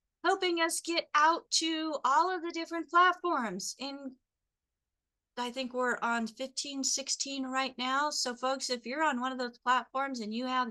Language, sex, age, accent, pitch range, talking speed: English, female, 40-59, American, 220-270 Hz, 175 wpm